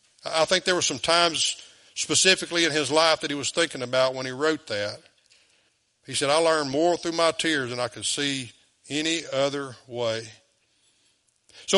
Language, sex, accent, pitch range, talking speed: English, male, American, 125-165 Hz, 180 wpm